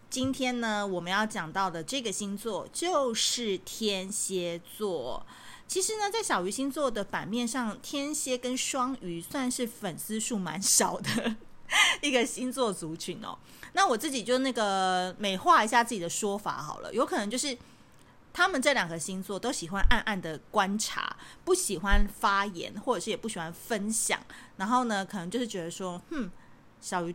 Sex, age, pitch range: female, 30-49, 190-250 Hz